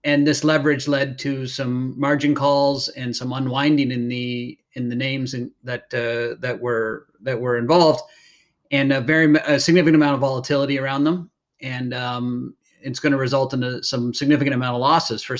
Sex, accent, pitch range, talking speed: male, American, 125-150 Hz, 185 wpm